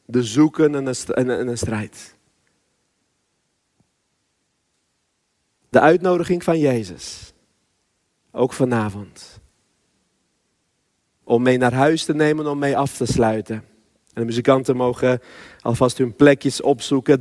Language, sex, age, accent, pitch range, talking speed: Dutch, male, 40-59, Dutch, 130-160 Hz, 105 wpm